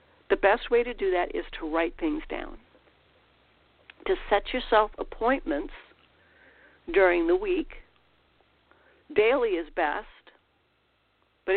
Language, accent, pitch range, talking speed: English, American, 220-360 Hz, 115 wpm